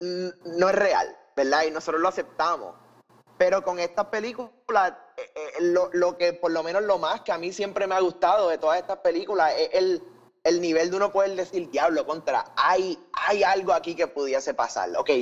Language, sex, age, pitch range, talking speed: Spanish, male, 20-39, 160-200 Hz, 205 wpm